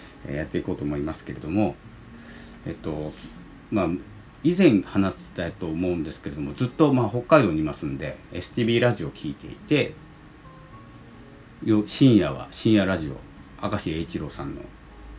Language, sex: Japanese, male